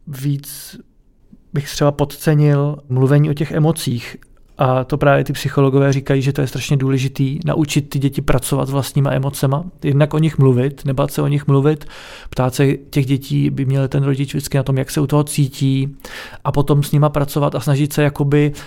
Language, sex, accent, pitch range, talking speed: Czech, male, native, 140-150 Hz, 195 wpm